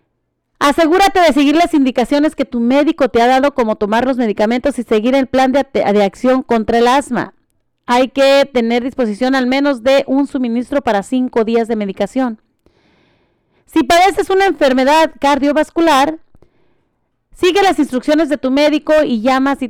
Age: 40-59